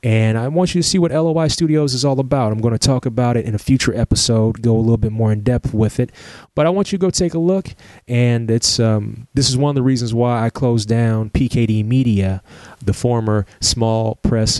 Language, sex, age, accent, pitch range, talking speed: English, male, 20-39, American, 105-125 Hz, 245 wpm